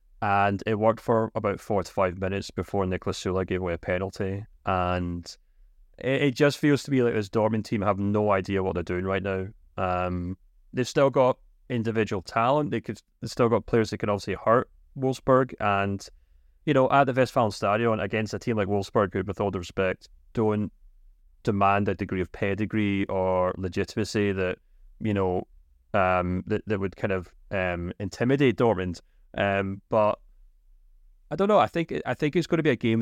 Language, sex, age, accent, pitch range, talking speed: English, male, 30-49, British, 95-110 Hz, 185 wpm